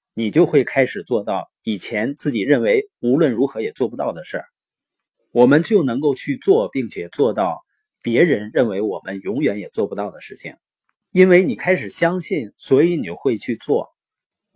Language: Chinese